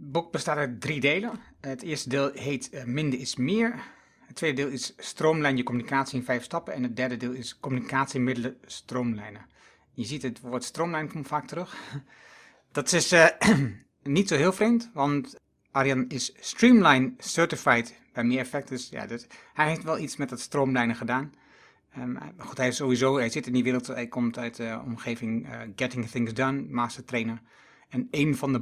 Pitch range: 120-145 Hz